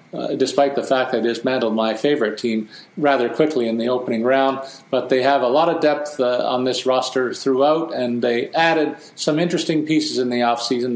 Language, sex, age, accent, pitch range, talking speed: English, male, 50-69, American, 125-150 Hz, 195 wpm